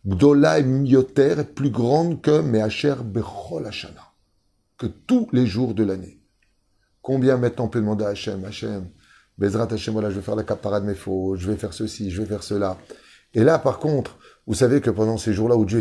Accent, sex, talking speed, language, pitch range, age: French, male, 195 wpm, French, 100-130 Hz, 30-49